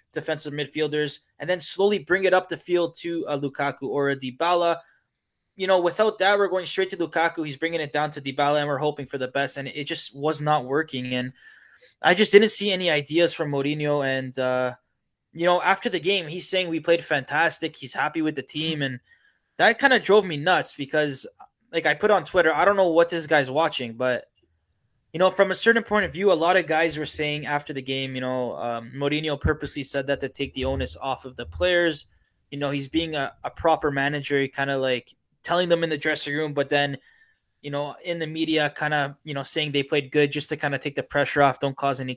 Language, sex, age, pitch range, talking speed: English, male, 20-39, 140-175 Hz, 235 wpm